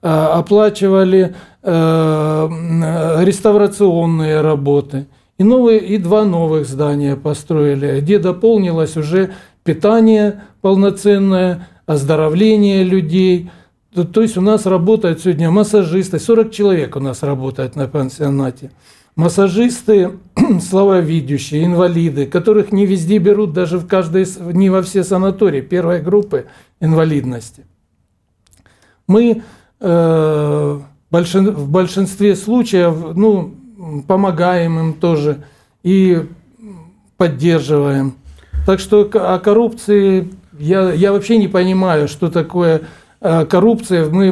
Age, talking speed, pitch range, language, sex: 60-79, 100 wpm, 160-195 Hz, Russian, male